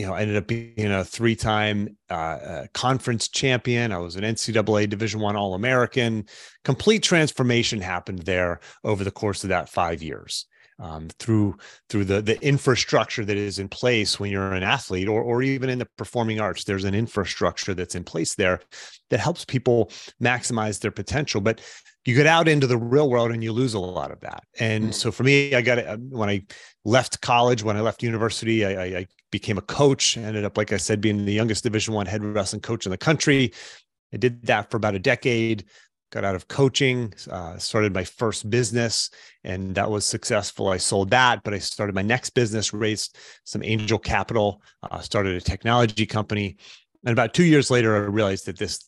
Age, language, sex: 30-49, English, male